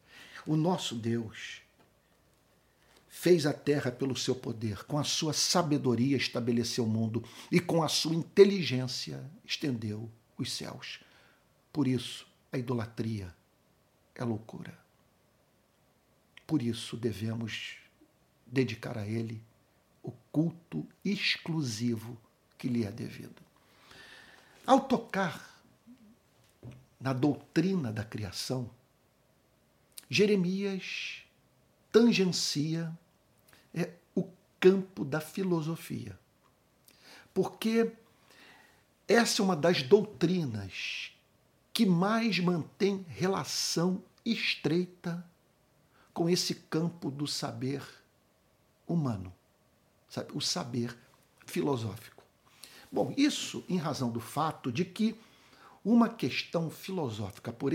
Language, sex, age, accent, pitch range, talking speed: Portuguese, male, 60-79, Brazilian, 120-185 Hz, 90 wpm